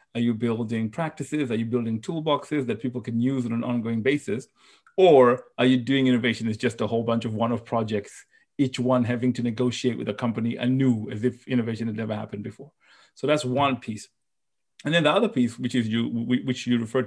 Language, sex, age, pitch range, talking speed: English, male, 30-49, 115-135 Hz, 205 wpm